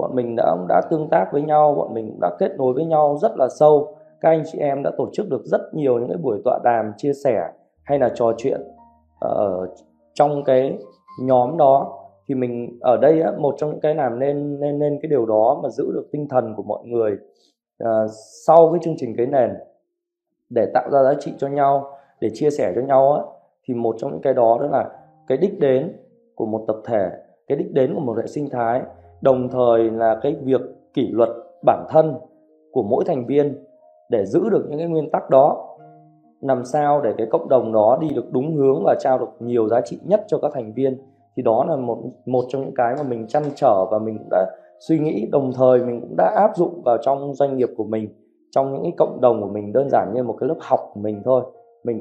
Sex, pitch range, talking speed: male, 115-150 Hz, 235 wpm